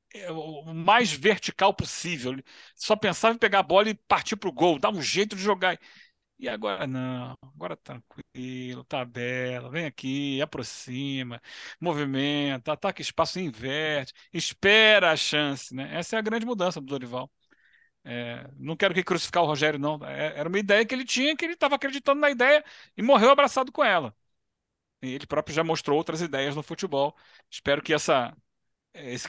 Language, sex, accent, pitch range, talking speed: Portuguese, male, Brazilian, 135-180 Hz, 170 wpm